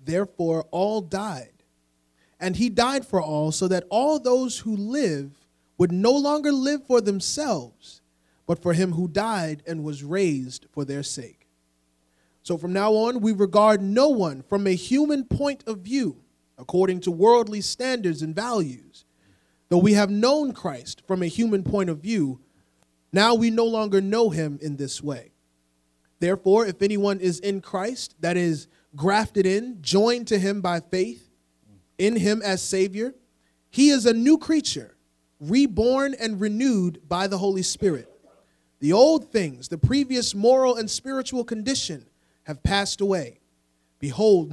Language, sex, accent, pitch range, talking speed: English, male, American, 150-230 Hz, 155 wpm